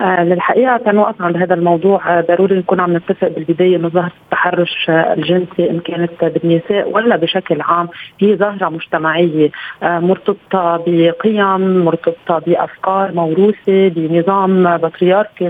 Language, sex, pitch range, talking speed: Arabic, female, 175-200 Hz, 115 wpm